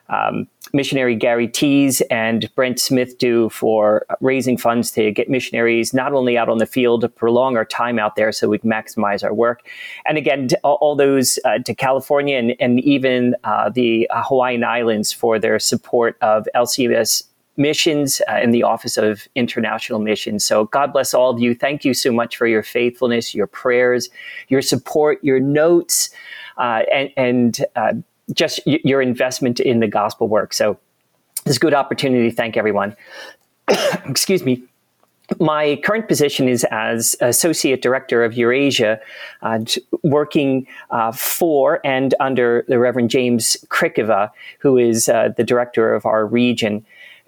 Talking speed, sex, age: 165 wpm, male, 40-59